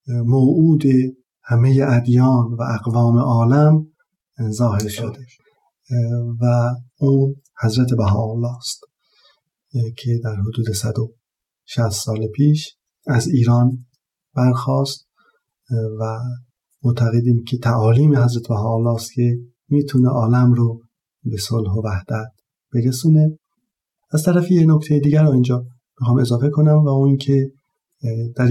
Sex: male